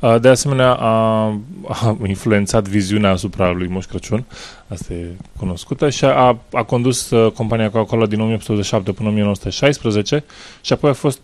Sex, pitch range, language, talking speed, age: male, 100-120 Hz, Romanian, 150 wpm, 20-39